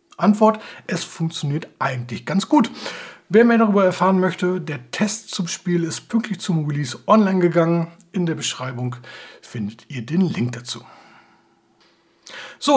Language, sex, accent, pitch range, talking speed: German, male, German, 130-195 Hz, 140 wpm